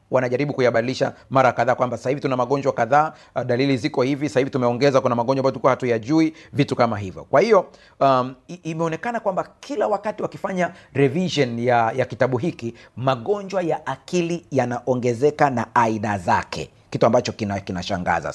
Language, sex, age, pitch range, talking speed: Swahili, male, 40-59, 125-155 Hz, 155 wpm